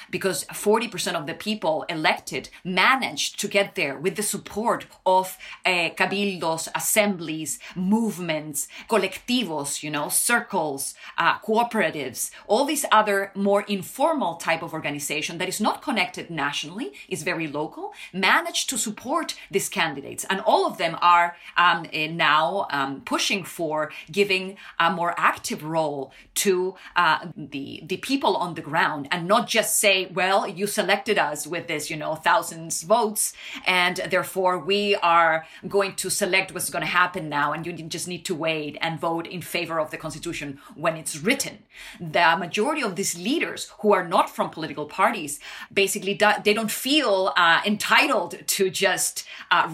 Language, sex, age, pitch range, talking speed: English, female, 30-49, 165-210 Hz, 160 wpm